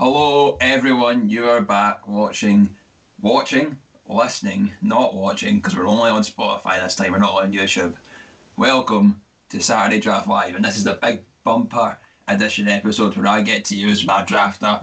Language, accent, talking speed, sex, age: English, British, 165 wpm, male, 20-39